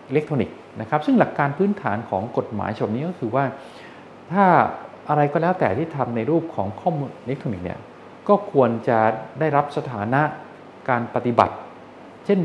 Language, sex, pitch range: Thai, male, 115-170 Hz